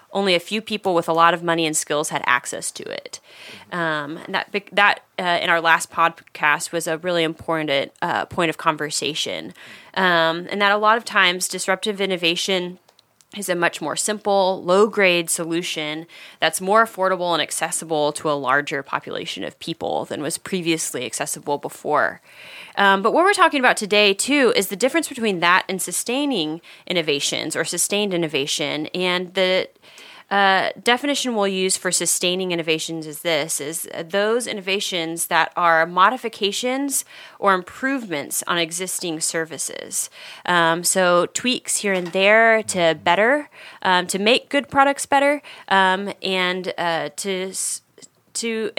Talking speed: 155 wpm